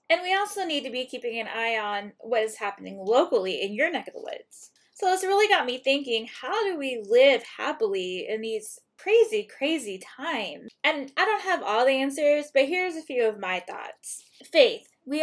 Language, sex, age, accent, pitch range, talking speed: English, female, 20-39, American, 230-340 Hz, 205 wpm